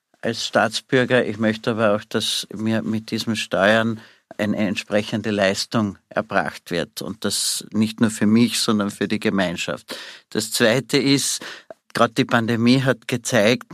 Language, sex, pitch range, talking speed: German, male, 105-125 Hz, 150 wpm